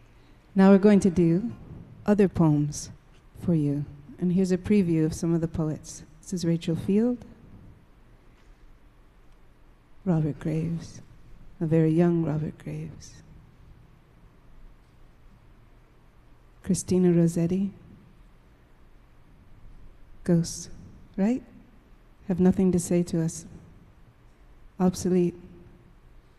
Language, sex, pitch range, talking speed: French, female, 150-180 Hz, 90 wpm